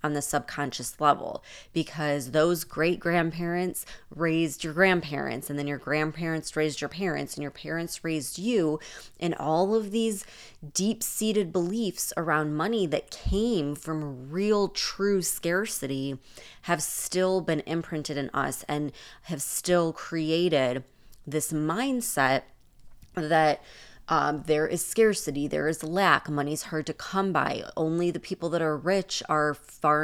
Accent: American